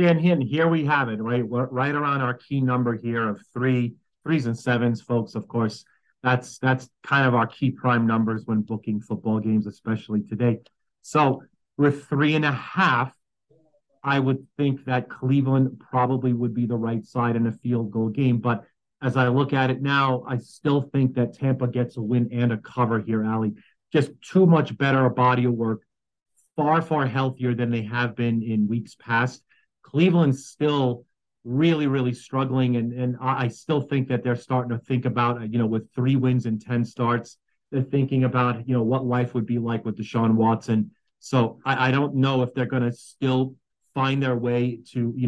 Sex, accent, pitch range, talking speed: male, American, 115-135 Hz, 195 wpm